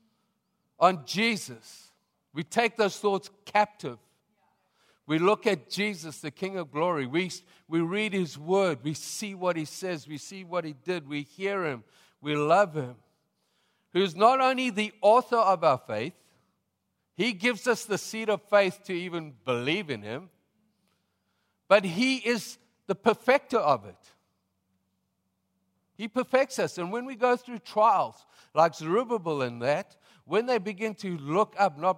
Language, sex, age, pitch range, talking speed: English, male, 50-69, 135-210 Hz, 160 wpm